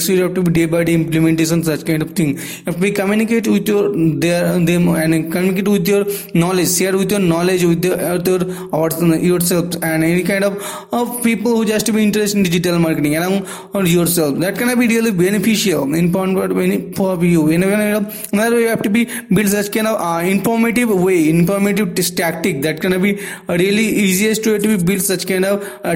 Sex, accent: male, Indian